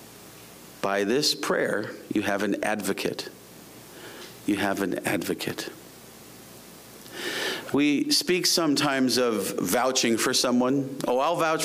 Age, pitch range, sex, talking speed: 40-59, 125-185 Hz, male, 110 wpm